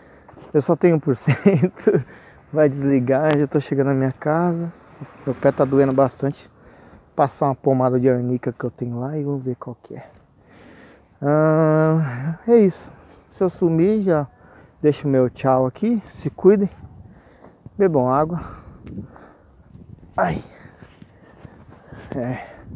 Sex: male